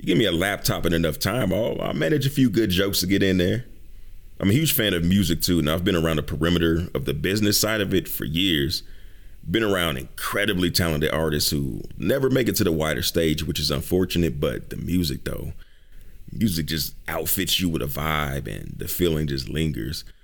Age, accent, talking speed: 30-49, American, 215 wpm